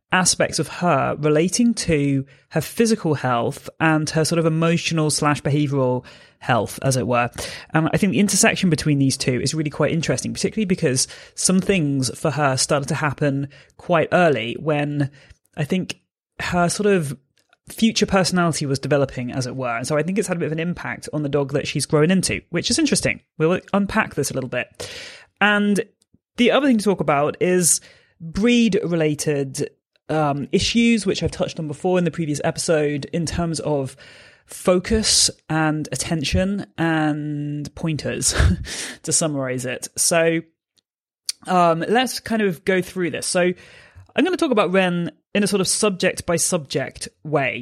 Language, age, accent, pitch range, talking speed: English, 30-49, British, 145-185 Hz, 175 wpm